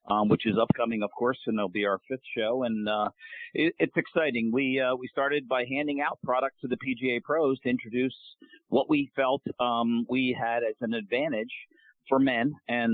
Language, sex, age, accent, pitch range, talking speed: English, male, 50-69, American, 115-135 Hz, 200 wpm